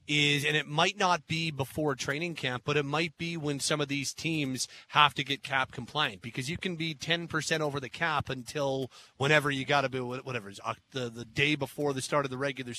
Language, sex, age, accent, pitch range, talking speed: English, male, 30-49, American, 130-160 Hz, 230 wpm